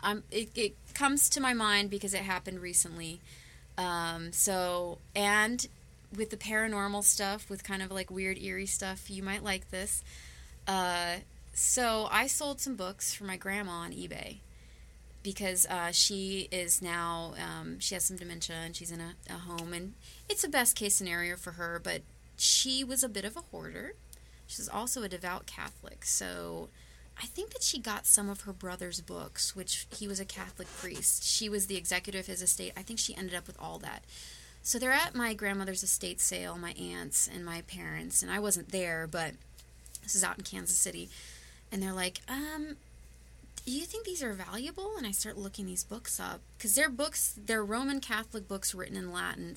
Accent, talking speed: American, 195 wpm